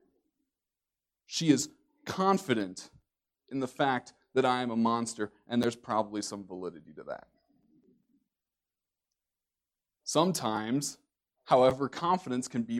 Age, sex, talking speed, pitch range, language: 30-49, male, 110 wpm, 115-145 Hz, English